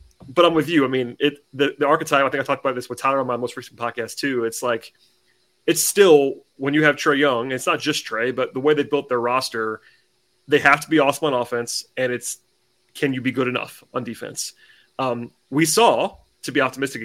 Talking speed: 235 wpm